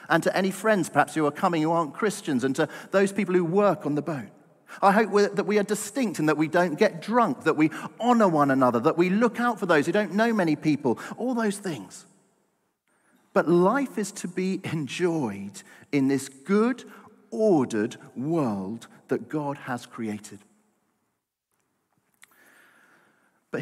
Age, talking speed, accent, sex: 40-59, 170 wpm, British, male